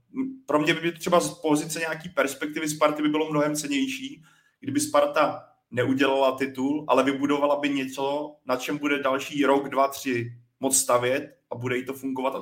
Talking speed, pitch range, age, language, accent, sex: 175 wpm, 130-150 Hz, 30-49, Czech, native, male